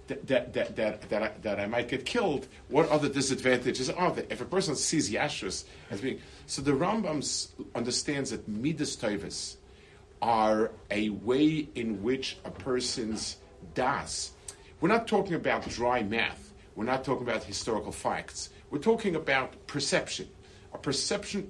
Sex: male